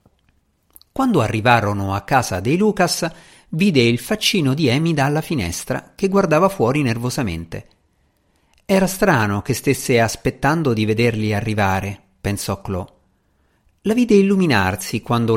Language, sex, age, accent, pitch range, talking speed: Italian, male, 50-69, native, 100-150 Hz, 120 wpm